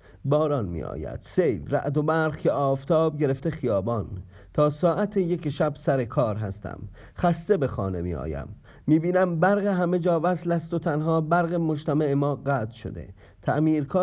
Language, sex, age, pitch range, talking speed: Persian, male, 40-59, 100-155 Hz, 160 wpm